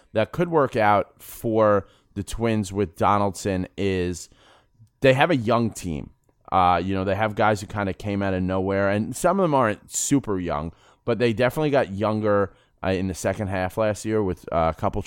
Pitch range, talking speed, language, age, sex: 90-110 Hz, 205 wpm, English, 30-49, male